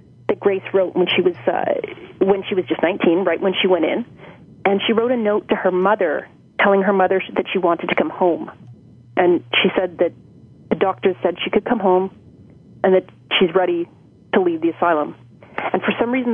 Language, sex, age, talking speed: English, female, 30-49, 210 wpm